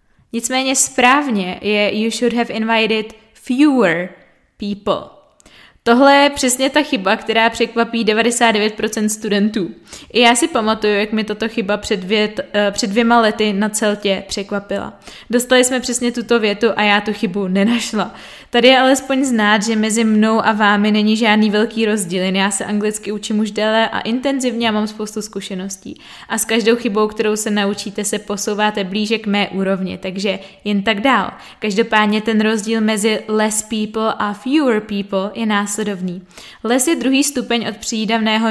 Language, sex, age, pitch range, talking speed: Czech, female, 20-39, 205-230 Hz, 165 wpm